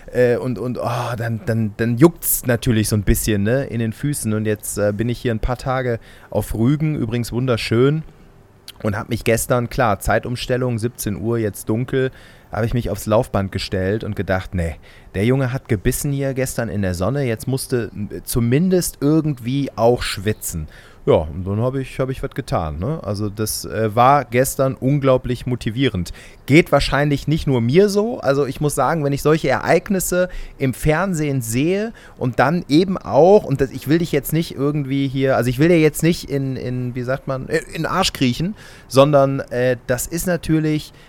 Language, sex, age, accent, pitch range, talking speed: German, male, 30-49, German, 115-145 Hz, 180 wpm